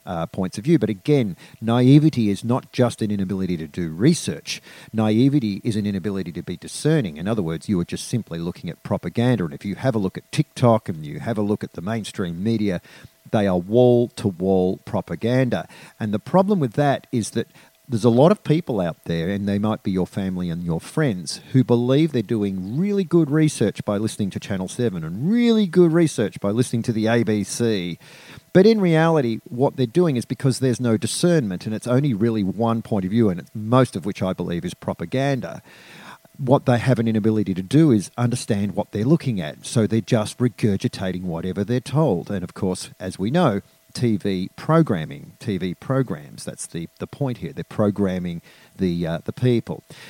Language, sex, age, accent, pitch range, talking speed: English, male, 40-59, Australian, 100-140 Hz, 200 wpm